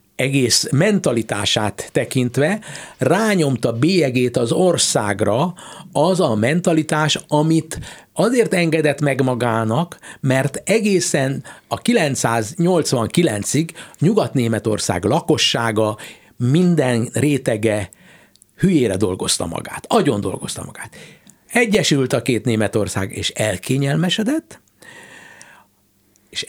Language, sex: Hungarian, male